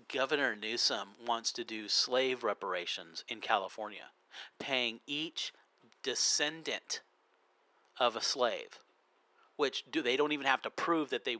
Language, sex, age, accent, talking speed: English, male, 40-59, American, 130 wpm